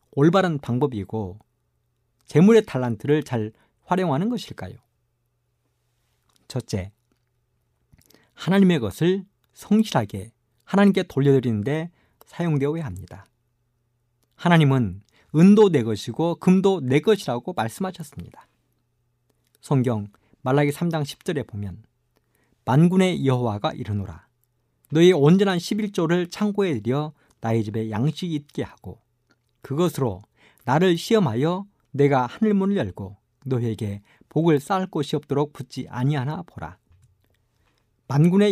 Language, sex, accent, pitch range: Korean, male, native, 115-165 Hz